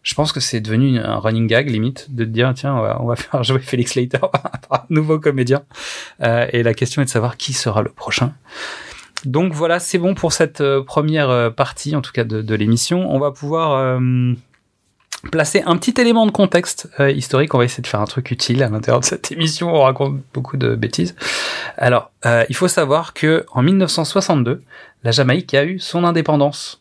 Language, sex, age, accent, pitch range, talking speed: French, male, 30-49, French, 115-150 Hz, 210 wpm